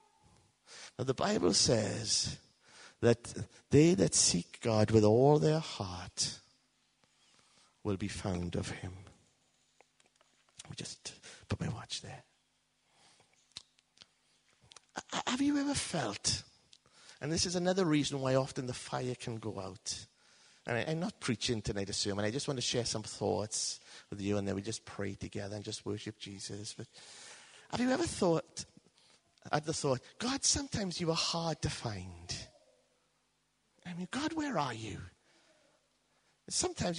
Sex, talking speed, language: male, 145 wpm, English